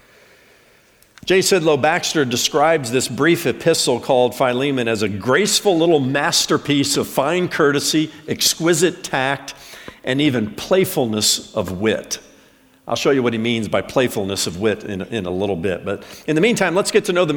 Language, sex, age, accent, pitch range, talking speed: English, male, 50-69, American, 135-180 Hz, 165 wpm